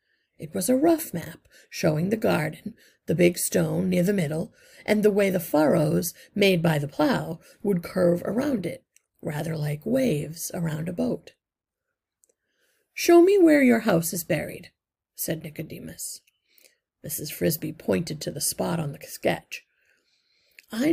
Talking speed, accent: 150 wpm, American